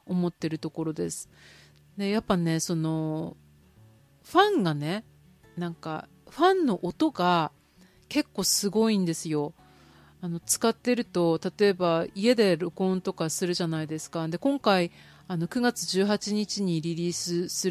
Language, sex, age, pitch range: Japanese, female, 40-59, 165-230 Hz